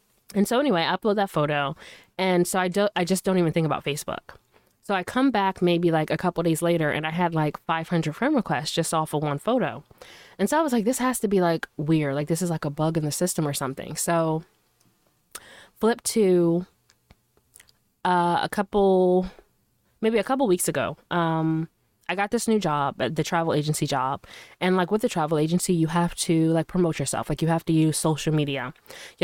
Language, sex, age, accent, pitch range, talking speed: English, female, 20-39, American, 155-185 Hz, 210 wpm